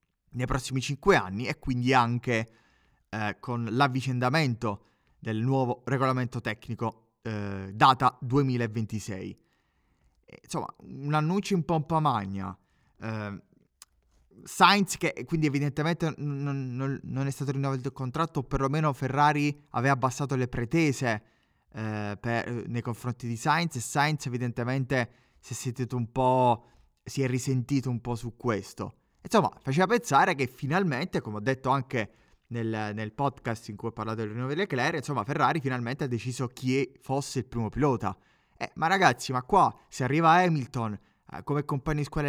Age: 20-39